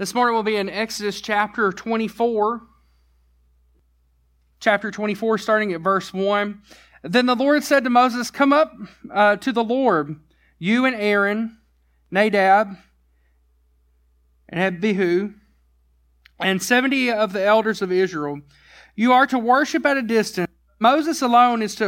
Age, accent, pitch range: 40-59, American, 175-235 Hz